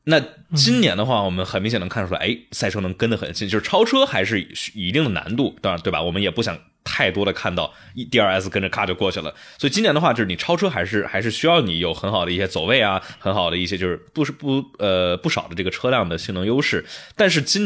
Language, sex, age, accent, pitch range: Chinese, male, 20-39, native, 100-160 Hz